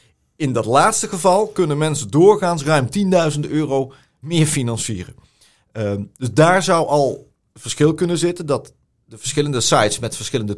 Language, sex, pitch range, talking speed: Dutch, male, 115-150 Hz, 145 wpm